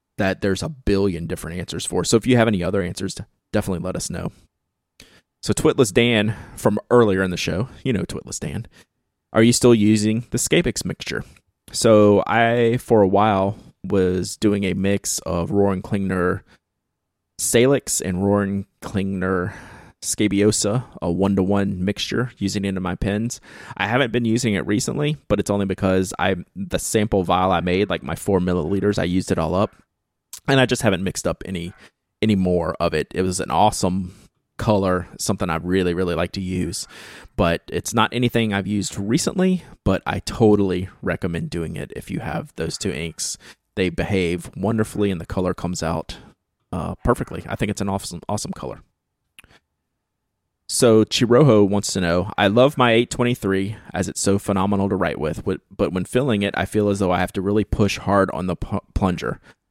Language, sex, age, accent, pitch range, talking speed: English, male, 20-39, American, 95-110 Hz, 180 wpm